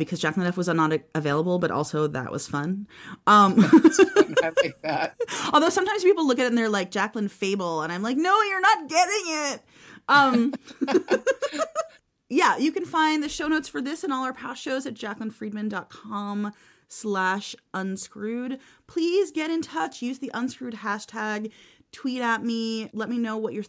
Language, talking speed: English, 165 wpm